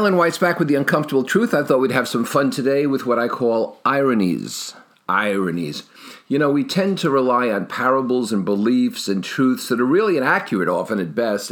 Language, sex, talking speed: English, male, 205 wpm